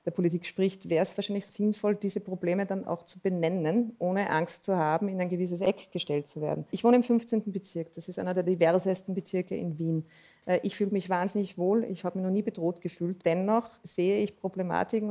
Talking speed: 210 wpm